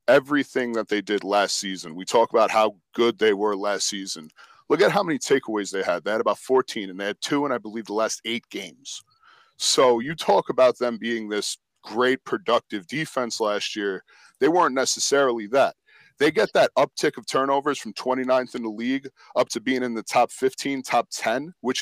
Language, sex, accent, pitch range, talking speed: English, male, American, 105-135 Hz, 205 wpm